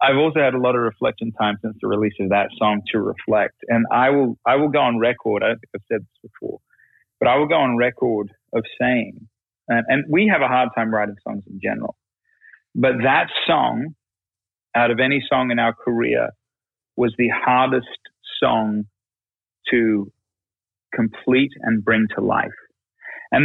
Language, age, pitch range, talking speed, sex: English, 30-49, 105-125 Hz, 180 wpm, male